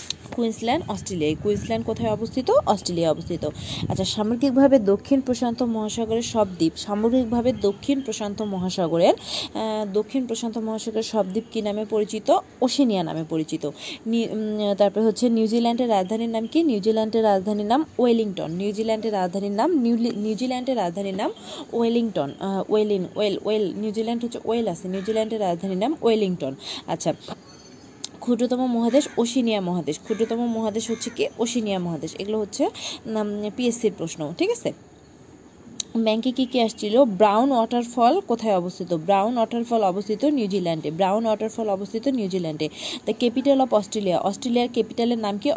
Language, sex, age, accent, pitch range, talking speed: Bengali, female, 20-39, native, 200-240 Hz, 130 wpm